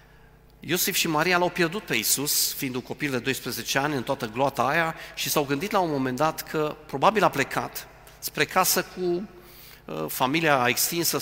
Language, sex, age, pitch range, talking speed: Romanian, male, 40-59, 140-175 Hz, 170 wpm